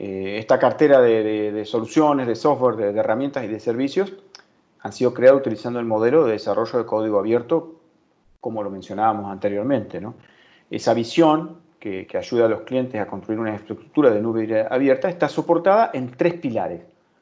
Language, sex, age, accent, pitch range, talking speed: Spanish, male, 40-59, Argentinian, 110-155 Hz, 180 wpm